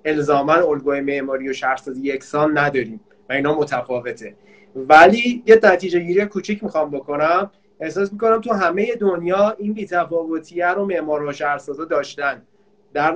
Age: 30-49